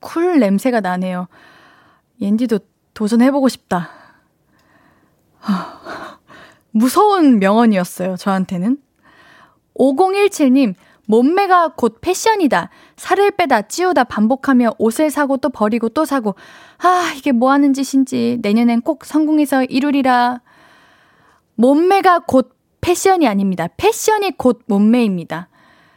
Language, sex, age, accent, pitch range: Korean, female, 20-39, native, 220-310 Hz